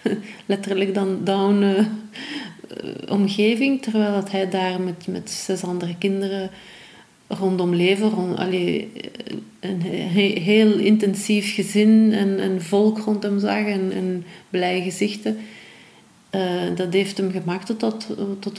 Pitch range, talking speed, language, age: 185-210 Hz, 125 wpm, Dutch, 40-59